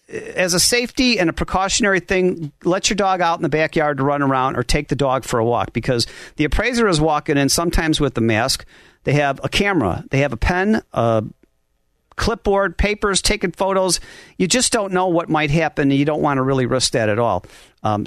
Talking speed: 215 wpm